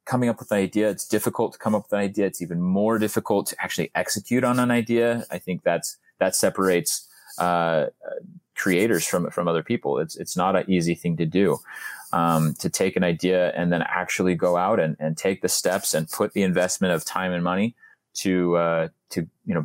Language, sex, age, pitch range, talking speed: English, male, 30-49, 85-100 Hz, 210 wpm